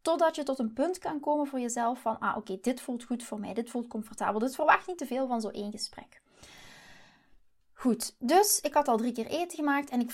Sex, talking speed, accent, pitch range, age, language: female, 245 wpm, Dutch, 220-280 Hz, 20-39, Dutch